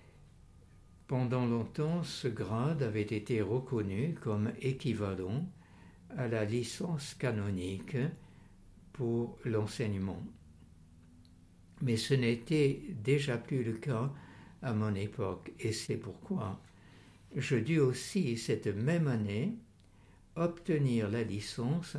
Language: French